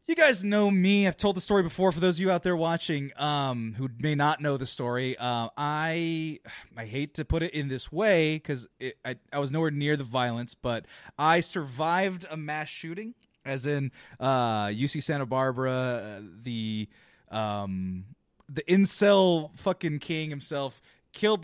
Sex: male